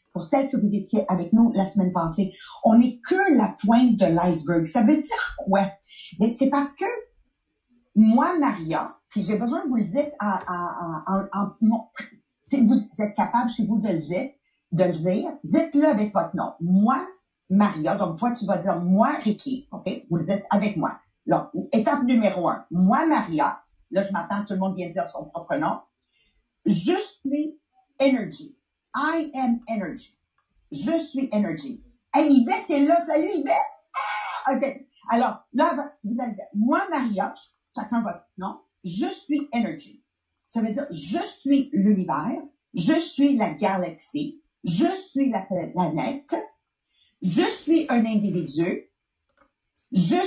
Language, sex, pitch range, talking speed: English, female, 195-285 Hz, 155 wpm